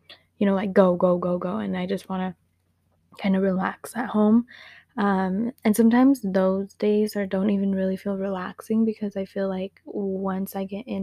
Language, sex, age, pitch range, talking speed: English, female, 10-29, 190-210 Hz, 195 wpm